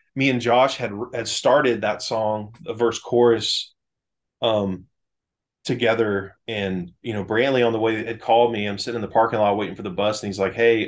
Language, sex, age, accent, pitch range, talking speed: English, male, 20-39, American, 95-115 Hz, 205 wpm